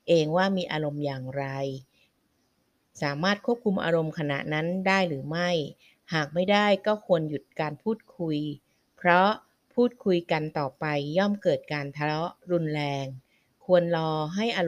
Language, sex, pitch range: Thai, female, 145-185 Hz